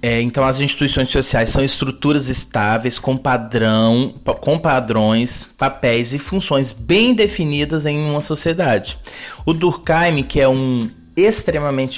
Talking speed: 120 wpm